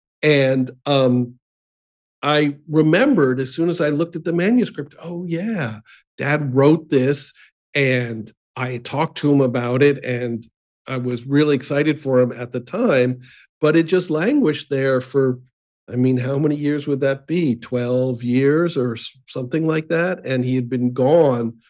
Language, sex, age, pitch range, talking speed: English, male, 50-69, 120-150 Hz, 165 wpm